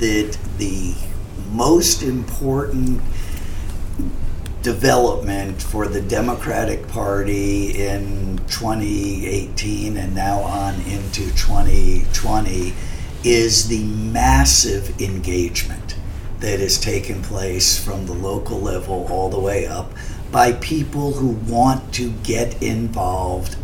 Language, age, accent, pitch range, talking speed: English, 50-69, American, 95-120 Hz, 100 wpm